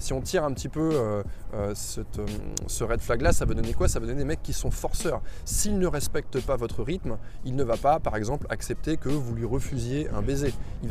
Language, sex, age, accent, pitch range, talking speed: French, male, 20-39, French, 110-150 Hz, 255 wpm